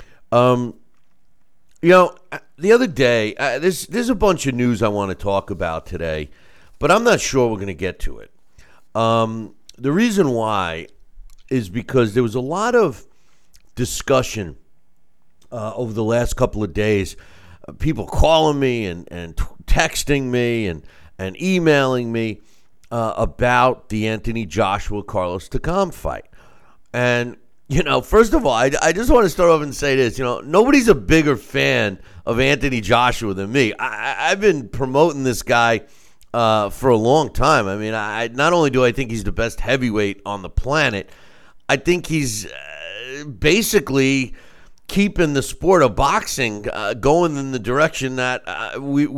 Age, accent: 50-69, American